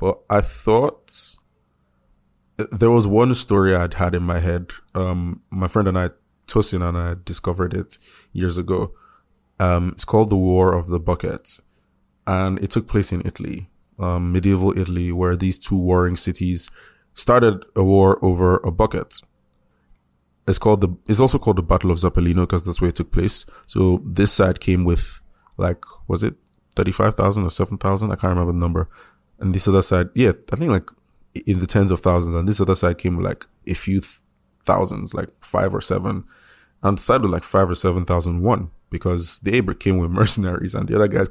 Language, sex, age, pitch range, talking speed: English, male, 20-39, 90-100 Hz, 190 wpm